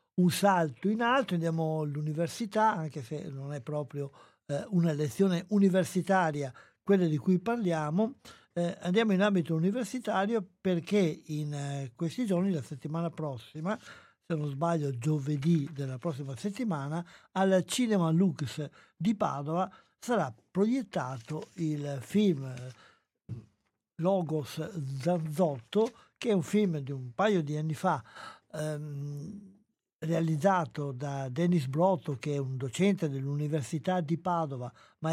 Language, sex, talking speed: Italian, male, 125 wpm